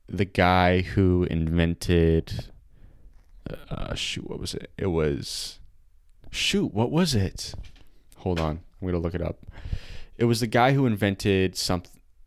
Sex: male